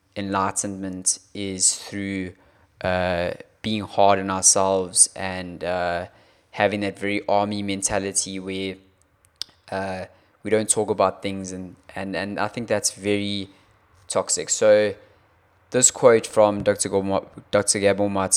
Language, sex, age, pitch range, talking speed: English, male, 20-39, 95-105 Hz, 125 wpm